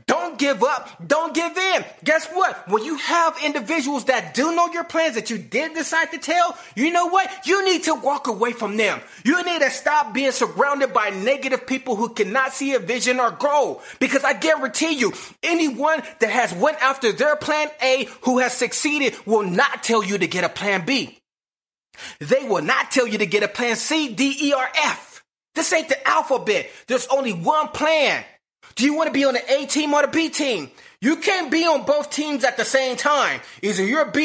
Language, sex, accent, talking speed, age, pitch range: English, male, American, 210 wpm, 30-49, 245-310 Hz